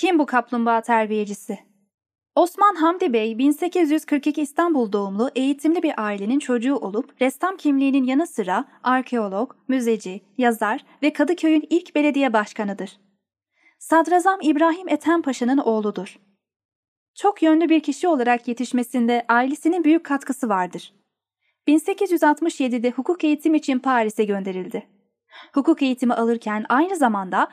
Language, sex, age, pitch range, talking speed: Turkish, female, 10-29, 220-310 Hz, 115 wpm